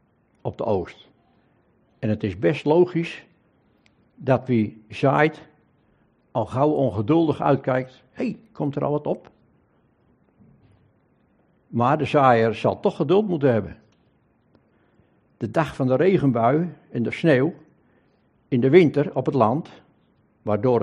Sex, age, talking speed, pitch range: male, 60-79, 130 wpm, 115-155 Hz